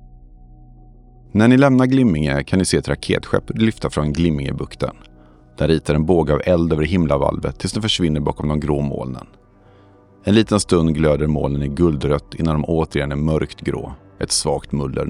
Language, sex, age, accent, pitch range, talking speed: Swedish, male, 40-59, native, 75-95 Hz, 175 wpm